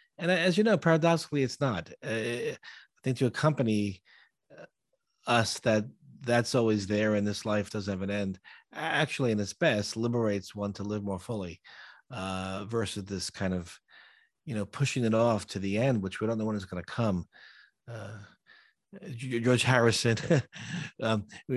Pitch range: 105-130 Hz